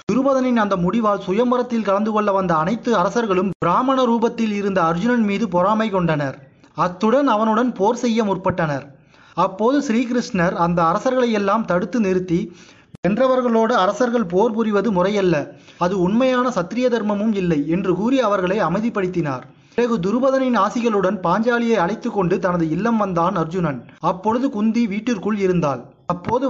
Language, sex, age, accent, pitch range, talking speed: Tamil, male, 30-49, native, 180-235 Hz, 125 wpm